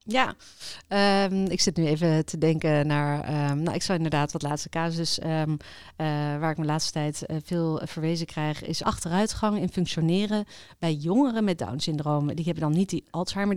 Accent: Dutch